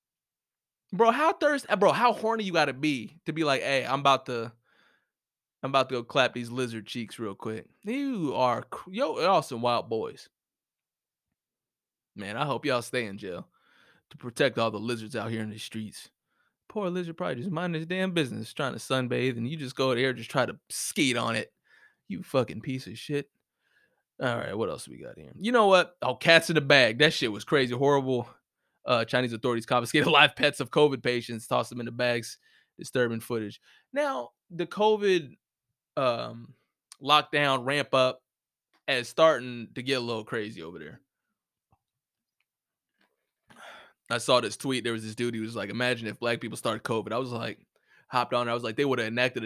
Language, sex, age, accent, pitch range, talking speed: English, male, 20-39, American, 115-150 Hz, 195 wpm